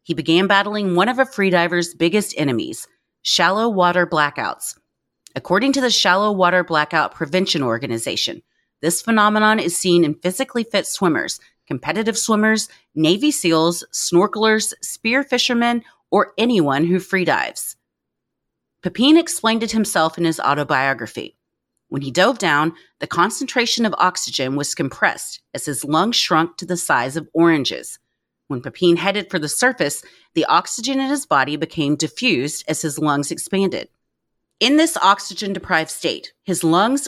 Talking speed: 145 wpm